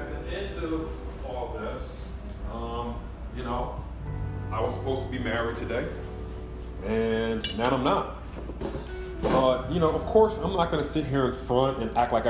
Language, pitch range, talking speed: English, 95-130 Hz, 175 wpm